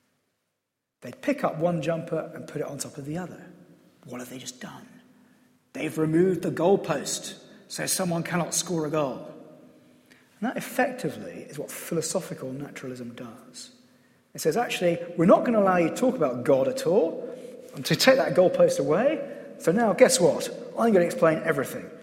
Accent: British